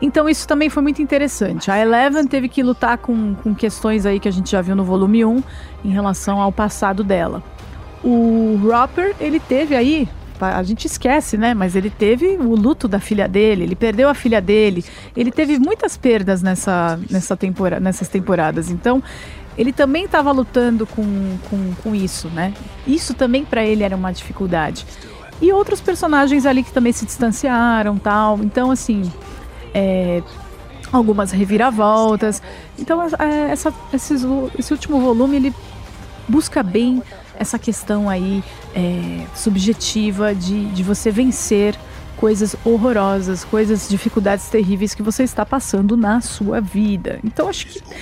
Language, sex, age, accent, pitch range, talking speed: English, female, 40-59, Brazilian, 200-265 Hz, 155 wpm